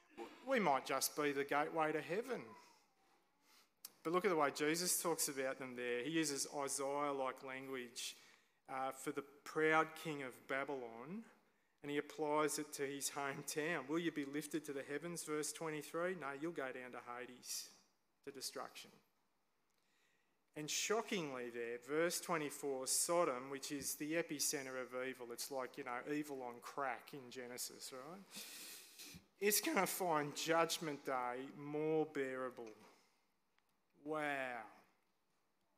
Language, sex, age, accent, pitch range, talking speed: English, male, 30-49, Australian, 135-155 Hz, 140 wpm